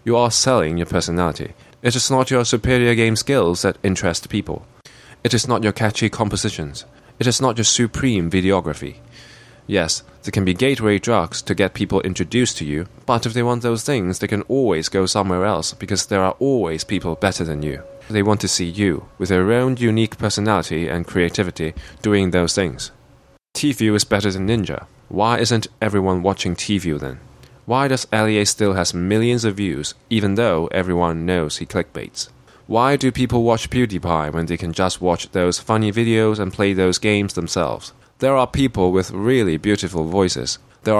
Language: English